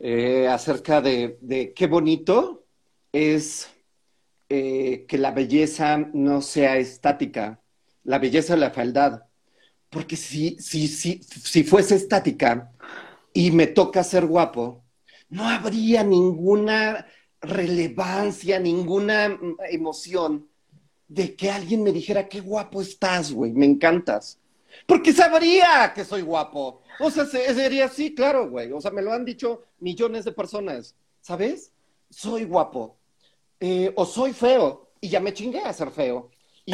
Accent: Mexican